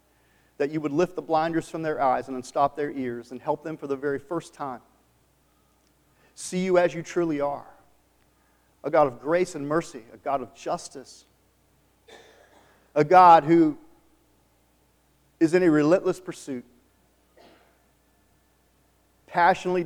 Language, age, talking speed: English, 40-59, 140 wpm